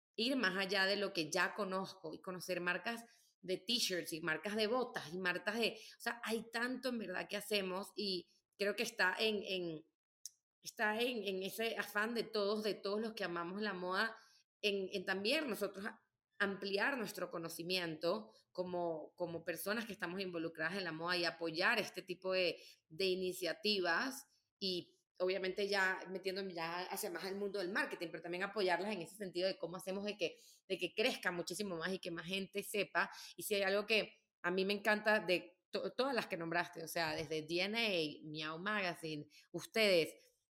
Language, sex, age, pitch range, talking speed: Spanish, female, 30-49, 180-210 Hz, 185 wpm